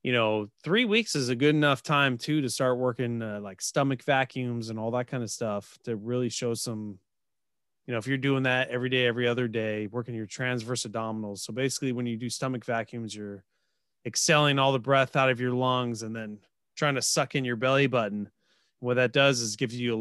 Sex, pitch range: male, 115-135 Hz